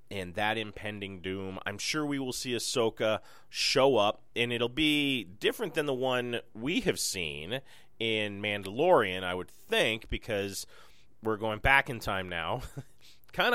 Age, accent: 30-49, American